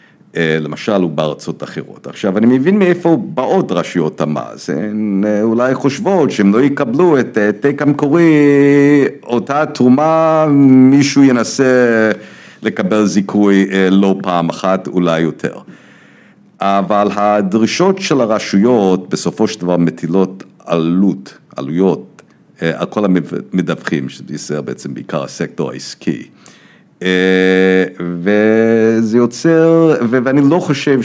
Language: Hebrew